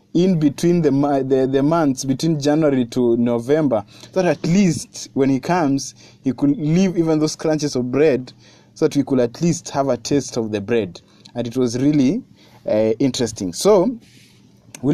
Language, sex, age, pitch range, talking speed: Swahili, male, 20-39, 115-140 Hz, 175 wpm